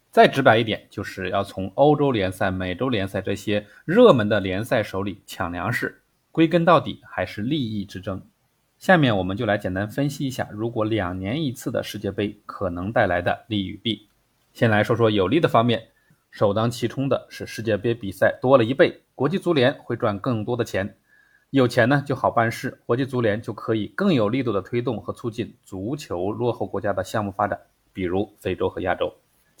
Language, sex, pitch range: Chinese, male, 100-130 Hz